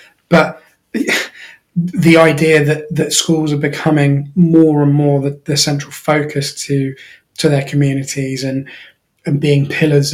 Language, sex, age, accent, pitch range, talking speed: English, male, 20-39, British, 140-155 Hz, 135 wpm